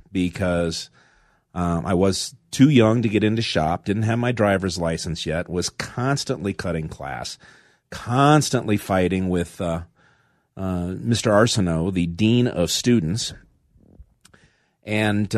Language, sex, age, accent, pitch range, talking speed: English, male, 40-59, American, 85-120 Hz, 125 wpm